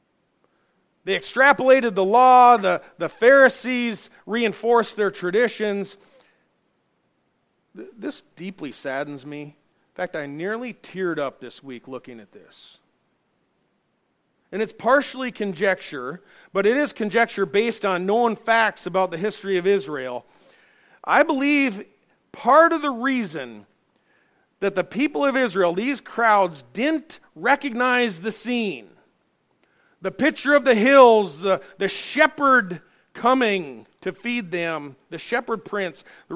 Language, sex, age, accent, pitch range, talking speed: English, male, 40-59, American, 145-230 Hz, 125 wpm